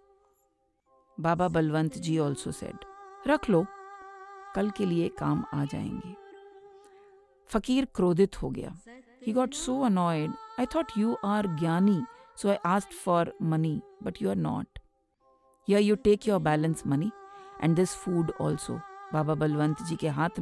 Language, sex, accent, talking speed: English, female, Indian, 140 wpm